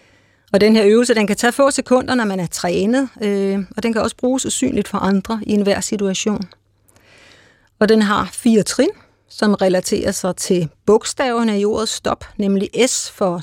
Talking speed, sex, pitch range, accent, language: 185 wpm, female, 185-225 Hz, native, Danish